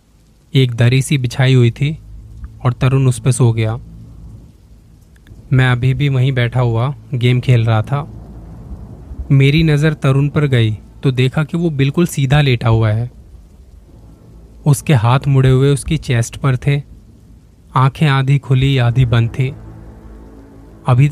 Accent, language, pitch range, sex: native, Hindi, 110-135 Hz, male